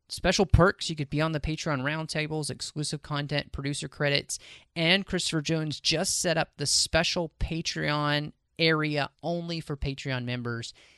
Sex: male